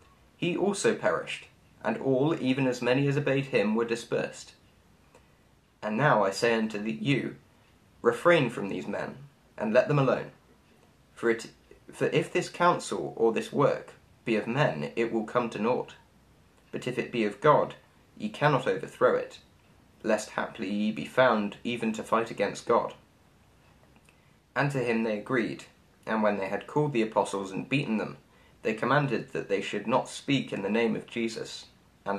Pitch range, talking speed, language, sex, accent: 110-145 Hz, 170 wpm, English, male, British